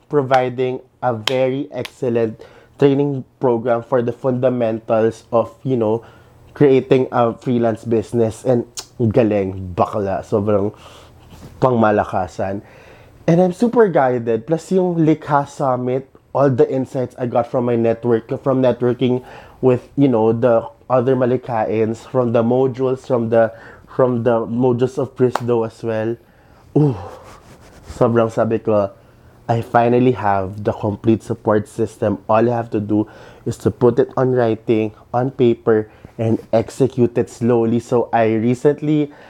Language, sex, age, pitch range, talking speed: Filipino, male, 20-39, 115-130 Hz, 135 wpm